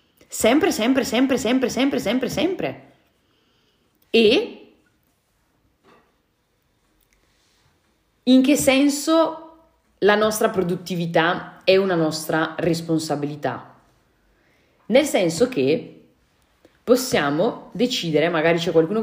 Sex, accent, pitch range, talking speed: female, native, 165-245 Hz, 80 wpm